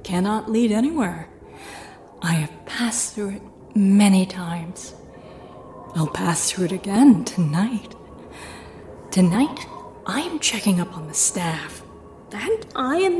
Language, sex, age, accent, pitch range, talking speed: English, female, 30-49, American, 175-240 Hz, 125 wpm